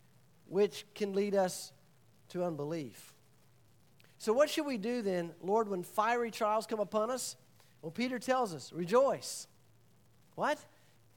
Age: 50-69